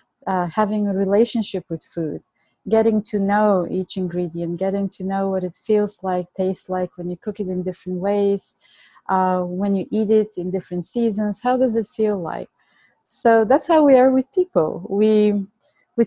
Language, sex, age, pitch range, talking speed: English, female, 30-49, 195-245 Hz, 185 wpm